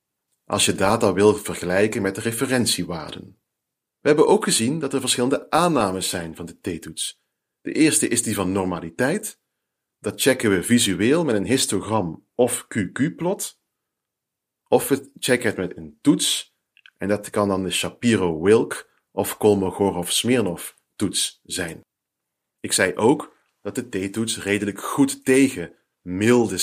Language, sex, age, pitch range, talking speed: Dutch, male, 40-59, 90-130 Hz, 140 wpm